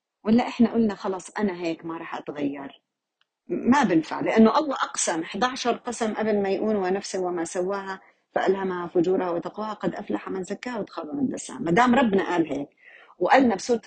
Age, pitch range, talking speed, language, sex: 40-59, 165-225 Hz, 170 wpm, Arabic, female